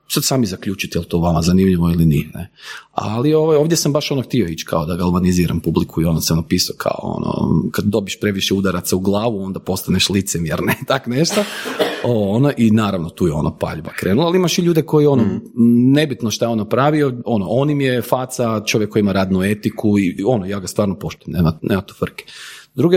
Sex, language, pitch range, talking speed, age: male, Croatian, 95-135 Hz, 205 wpm, 40-59